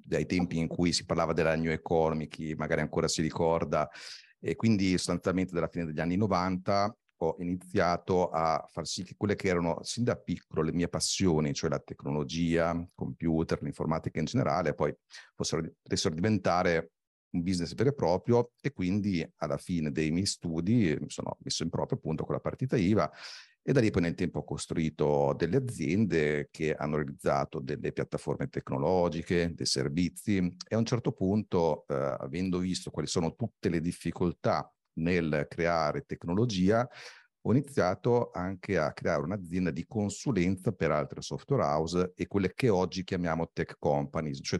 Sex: male